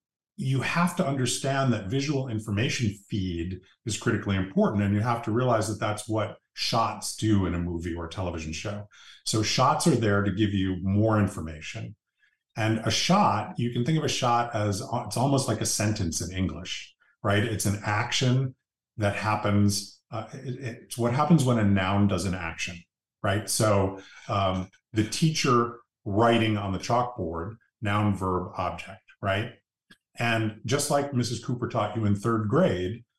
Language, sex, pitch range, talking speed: English, male, 100-130 Hz, 165 wpm